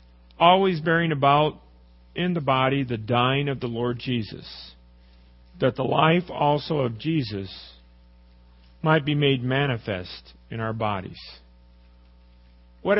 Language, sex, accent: English, male, American